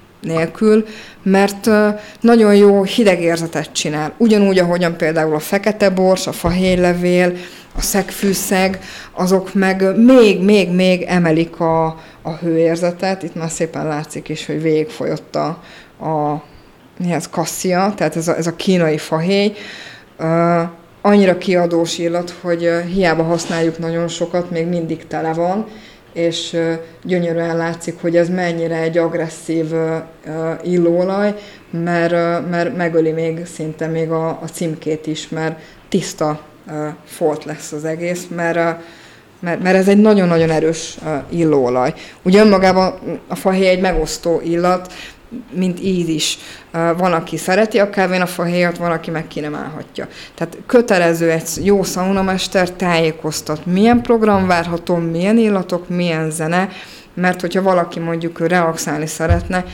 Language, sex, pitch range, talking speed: Hungarian, female, 160-185 Hz, 125 wpm